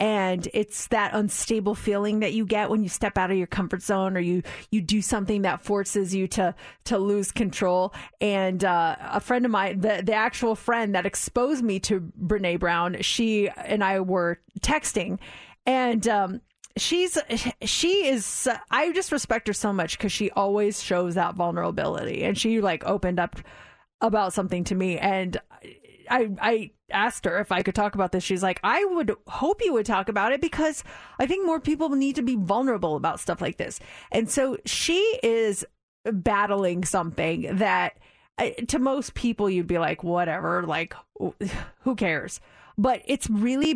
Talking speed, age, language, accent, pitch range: 175 wpm, 30-49, English, American, 185-230 Hz